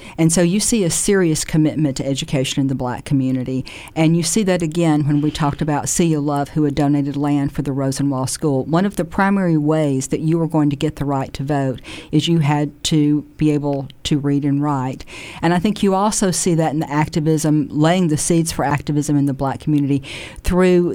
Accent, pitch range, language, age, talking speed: American, 145-170 Hz, English, 50-69, 220 wpm